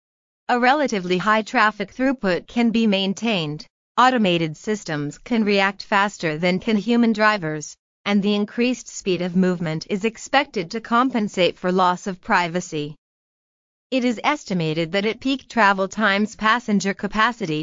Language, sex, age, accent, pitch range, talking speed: English, female, 30-49, American, 180-225 Hz, 140 wpm